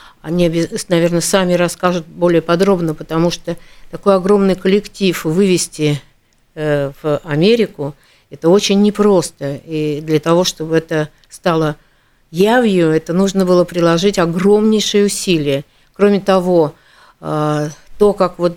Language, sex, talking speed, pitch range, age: Russian, female, 110 wpm, 160-185 Hz, 60-79